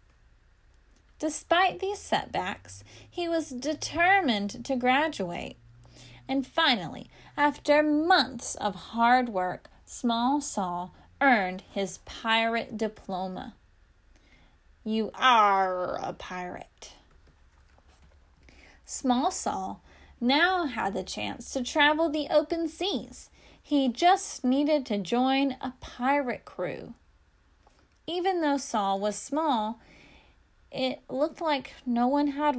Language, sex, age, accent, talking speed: English, female, 10-29, American, 100 wpm